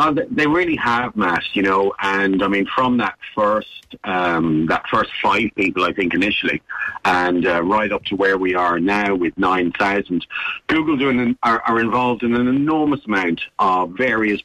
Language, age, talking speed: English, 50-69, 165 wpm